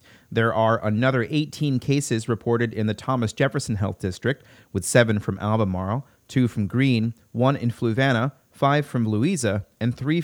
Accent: American